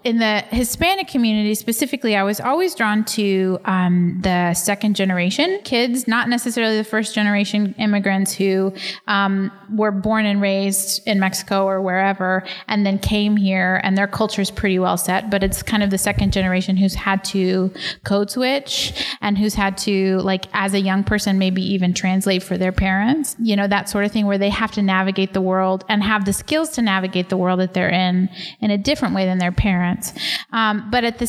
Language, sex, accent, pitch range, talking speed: English, female, American, 190-220 Hz, 200 wpm